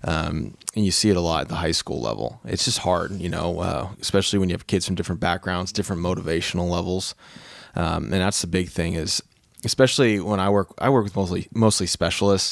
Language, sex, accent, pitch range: English, male, American, 90-110 Hz